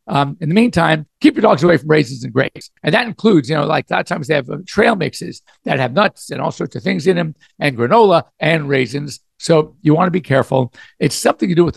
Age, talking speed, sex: 60-79, 265 wpm, male